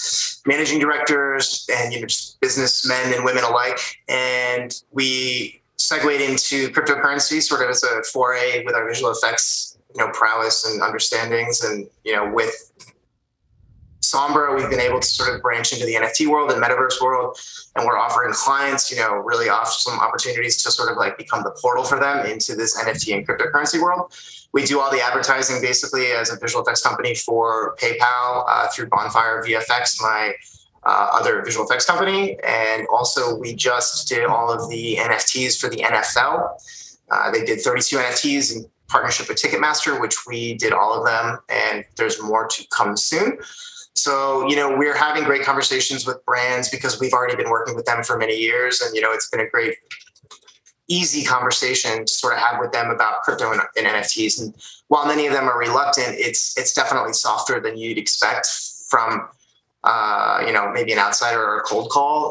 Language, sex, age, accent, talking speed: English, male, 20-39, American, 185 wpm